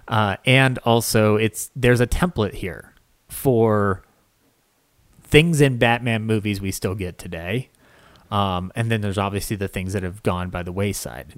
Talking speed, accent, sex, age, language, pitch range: 160 wpm, American, male, 30-49, English, 100-120 Hz